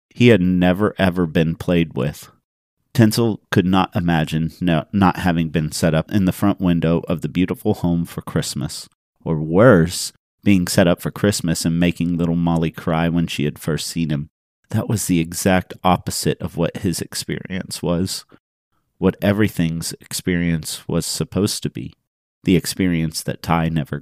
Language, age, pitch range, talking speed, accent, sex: English, 40-59, 80-100 Hz, 165 wpm, American, male